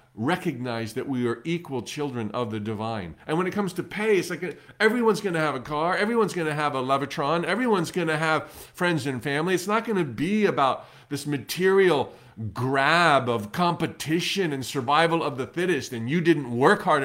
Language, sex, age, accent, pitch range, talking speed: English, male, 40-59, American, 120-170 Hz, 200 wpm